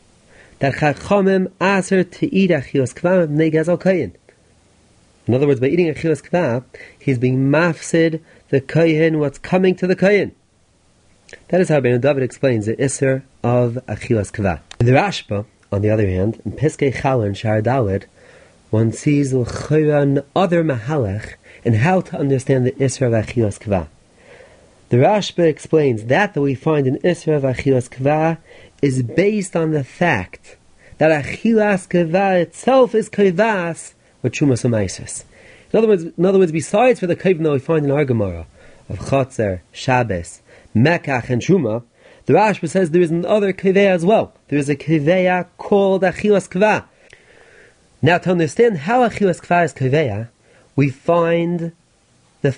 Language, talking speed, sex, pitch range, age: English, 155 wpm, male, 125-175 Hz, 30-49